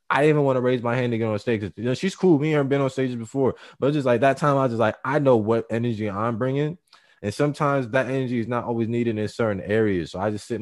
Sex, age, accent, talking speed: male, 20-39, American, 300 wpm